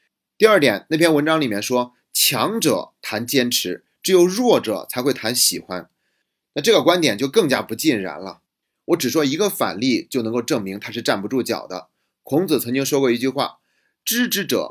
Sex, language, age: male, Chinese, 30-49